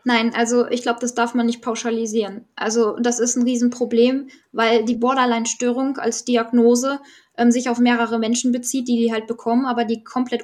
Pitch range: 230-255 Hz